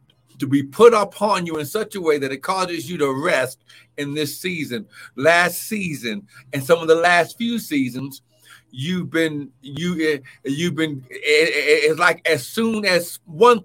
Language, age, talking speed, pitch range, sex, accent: English, 60-79, 170 wpm, 135-180 Hz, male, American